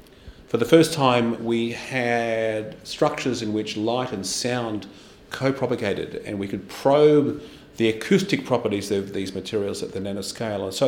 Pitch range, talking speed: 105-125 Hz, 155 wpm